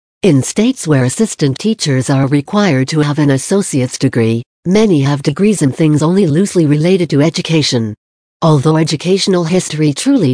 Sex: female